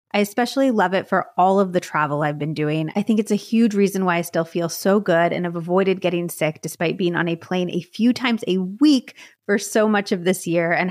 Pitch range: 170-220 Hz